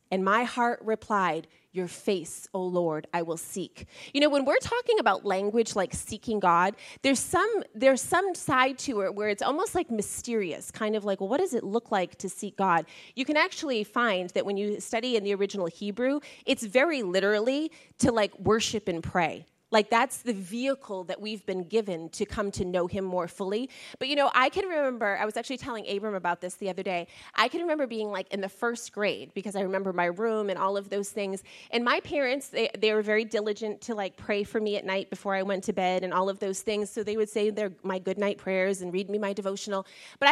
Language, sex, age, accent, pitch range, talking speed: English, female, 30-49, American, 190-240 Hz, 230 wpm